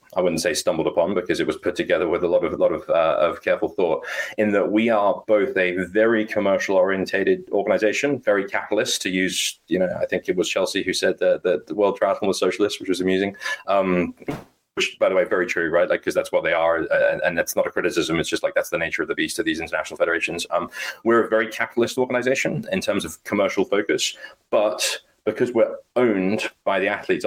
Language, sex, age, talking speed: English, male, 30-49, 230 wpm